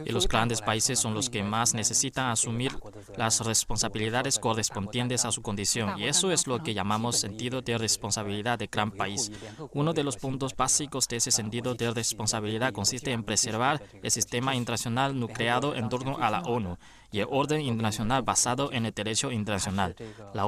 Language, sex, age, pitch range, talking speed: Spanish, male, 20-39, 110-130 Hz, 175 wpm